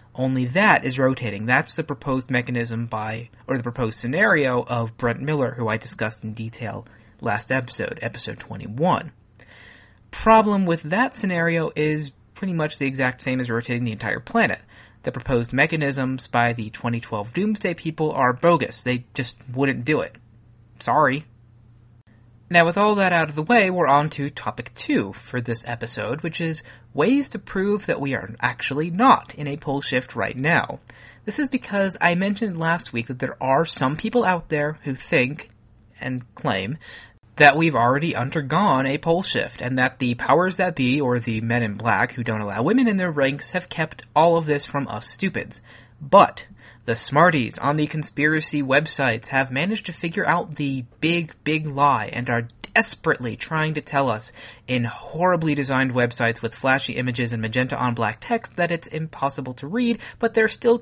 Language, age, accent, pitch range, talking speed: English, 30-49, American, 115-160 Hz, 180 wpm